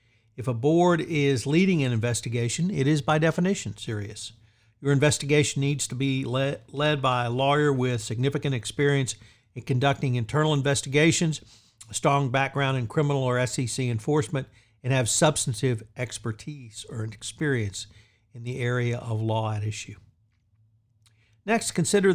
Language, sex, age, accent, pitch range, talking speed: English, male, 50-69, American, 115-145 Hz, 140 wpm